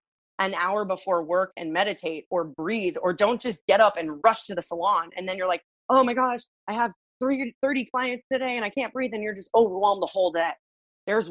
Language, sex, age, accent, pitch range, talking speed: English, female, 20-39, American, 170-225 Hz, 230 wpm